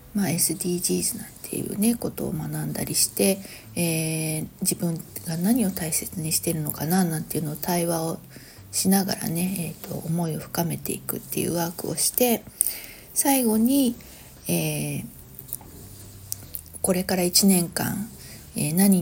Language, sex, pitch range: Japanese, female, 155-205 Hz